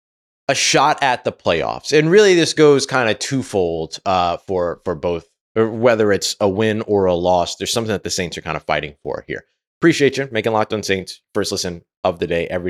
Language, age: English, 30-49